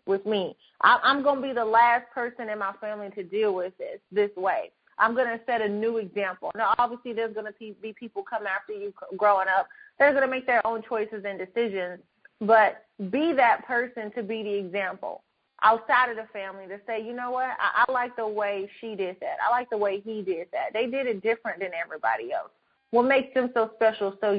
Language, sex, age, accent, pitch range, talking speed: English, female, 30-49, American, 205-245 Hz, 220 wpm